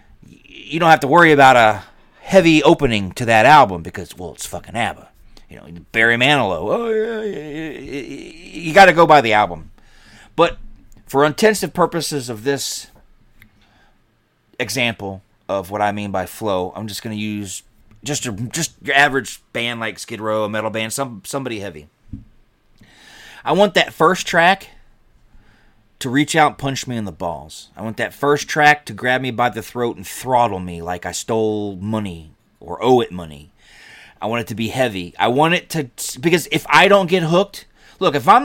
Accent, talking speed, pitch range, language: American, 185 wpm, 105-160 Hz, English